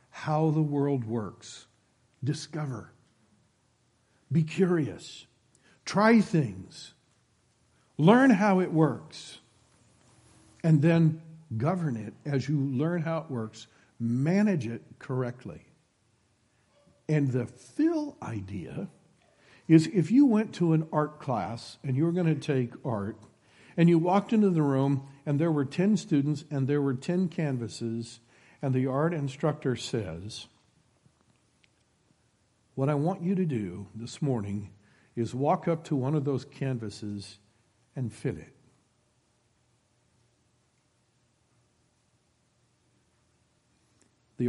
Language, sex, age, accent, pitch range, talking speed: English, male, 60-79, American, 115-160 Hz, 115 wpm